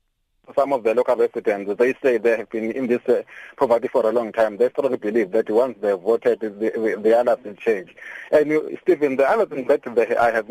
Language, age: English, 30-49